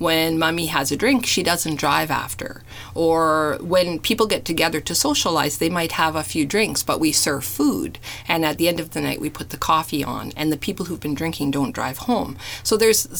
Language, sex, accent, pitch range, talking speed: English, female, American, 150-210 Hz, 225 wpm